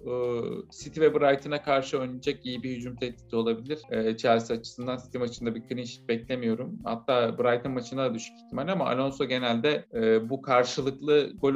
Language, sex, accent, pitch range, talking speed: Turkish, male, native, 115-145 Hz, 145 wpm